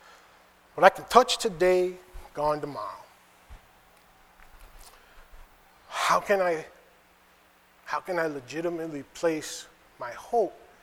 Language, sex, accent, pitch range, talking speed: English, male, American, 155-200 Hz, 95 wpm